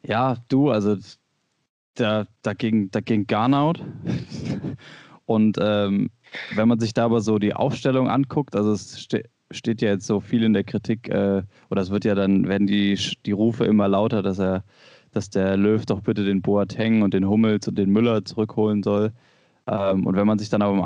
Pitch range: 100-120 Hz